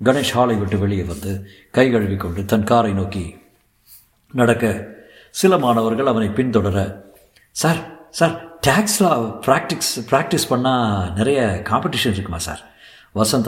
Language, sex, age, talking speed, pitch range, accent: Tamil, male, 50-69, 110 wpm, 105-165 Hz, native